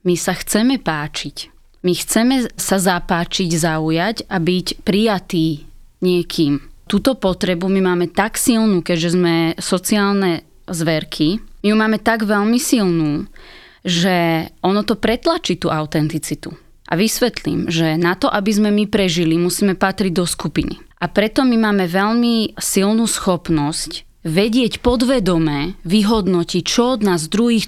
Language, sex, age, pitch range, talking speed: Slovak, female, 20-39, 170-220 Hz, 135 wpm